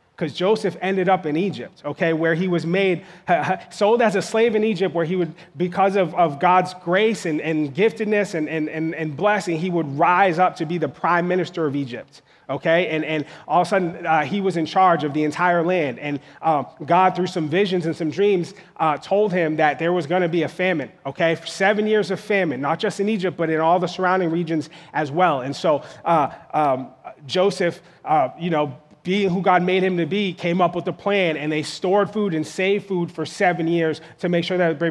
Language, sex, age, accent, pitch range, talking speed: English, male, 30-49, American, 165-195 Hz, 230 wpm